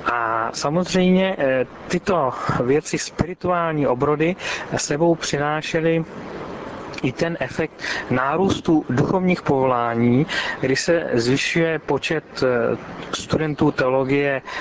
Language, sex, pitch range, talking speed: Czech, male, 130-170 Hz, 80 wpm